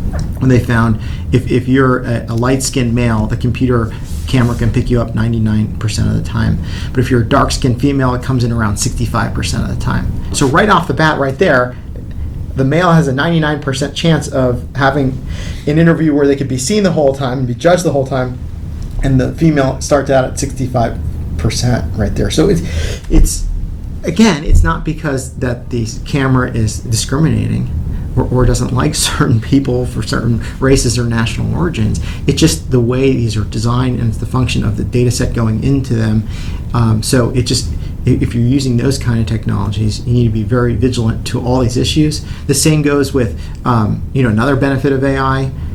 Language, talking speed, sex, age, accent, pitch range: English, 195 wpm, male, 30-49, American, 110-135 Hz